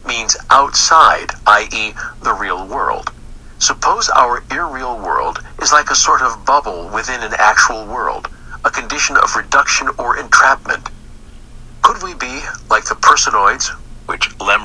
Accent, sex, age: American, male, 50-69